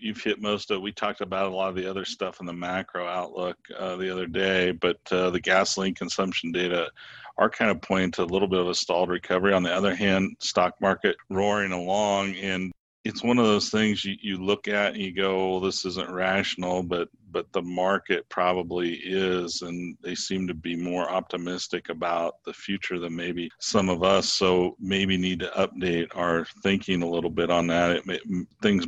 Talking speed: 205 wpm